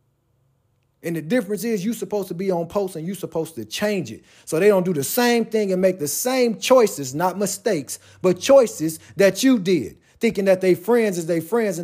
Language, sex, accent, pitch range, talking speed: English, male, American, 155-220 Hz, 220 wpm